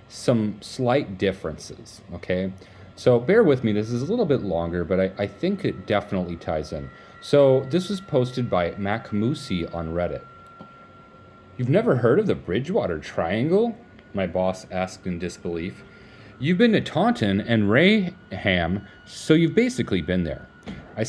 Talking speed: 155 wpm